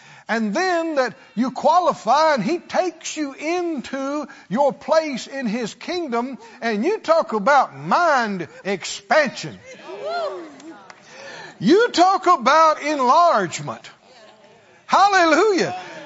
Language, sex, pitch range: English, male, 205-335 Hz